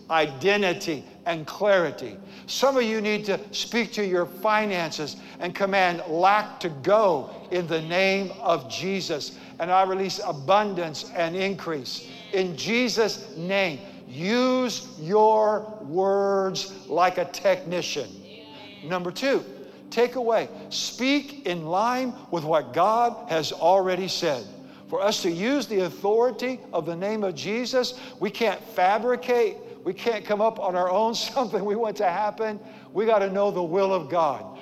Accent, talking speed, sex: American, 145 wpm, male